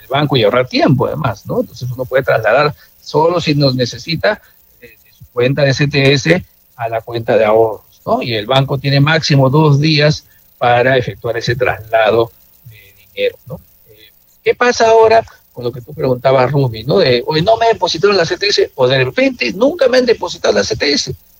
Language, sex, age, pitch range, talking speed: Spanish, male, 50-69, 125-205 Hz, 190 wpm